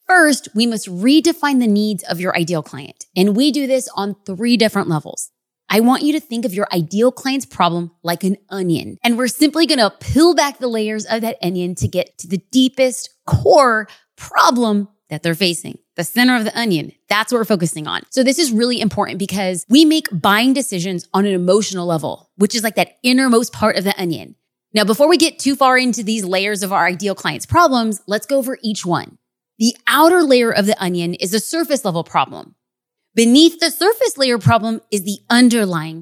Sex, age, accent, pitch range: female, 20-39, American, 190-260 Hz